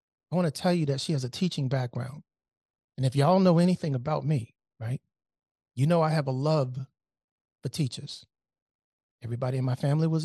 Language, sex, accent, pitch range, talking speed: English, male, American, 130-165 Hz, 180 wpm